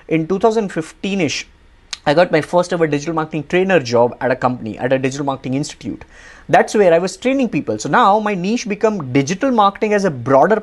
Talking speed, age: 205 wpm, 20-39